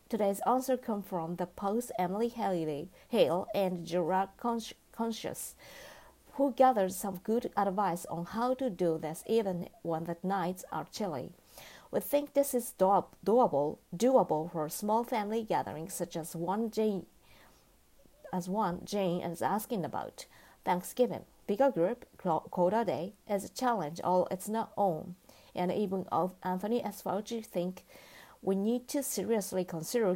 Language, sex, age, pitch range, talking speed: English, female, 50-69, 175-230 Hz, 145 wpm